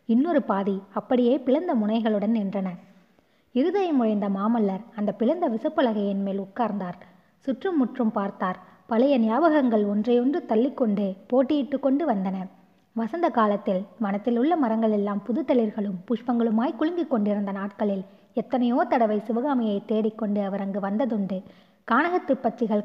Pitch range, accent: 210-260 Hz, native